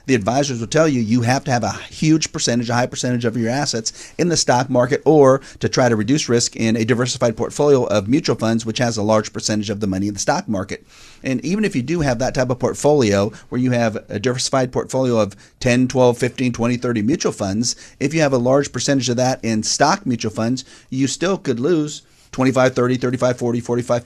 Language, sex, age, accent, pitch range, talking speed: English, male, 40-59, American, 110-130 Hz, 225 wpm